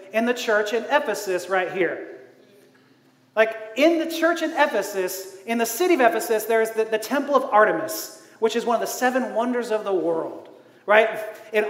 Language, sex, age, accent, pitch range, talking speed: English, male, 30-49, American, 210-295 Hz, 190 wpm